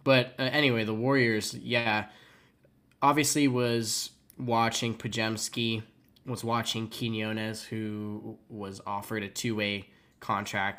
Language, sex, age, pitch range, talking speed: English, male, 10-29, 105-120 Hz, 105 wpm